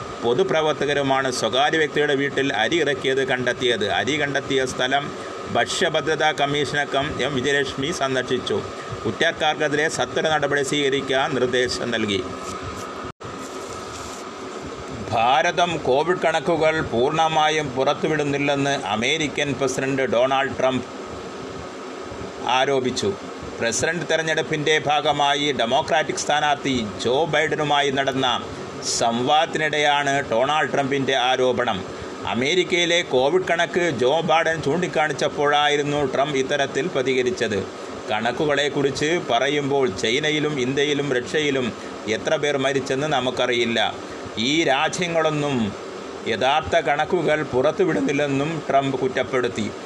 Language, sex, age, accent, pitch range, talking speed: Malayalam, male, 30-49, native, 130-155 Hz, 80 wpm